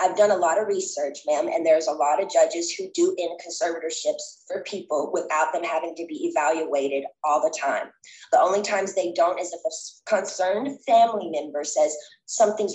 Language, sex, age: Thai, female, 20-39